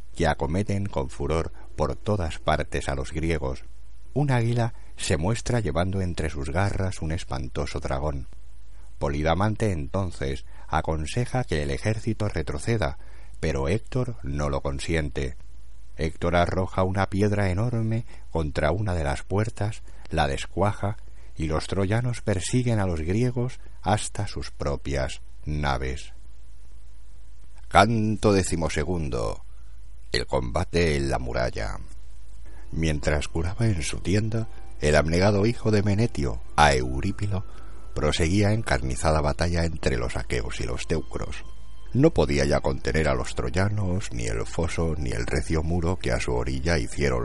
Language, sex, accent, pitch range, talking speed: Spanish, male, Spanish, 70-100 Hz, 130 wpm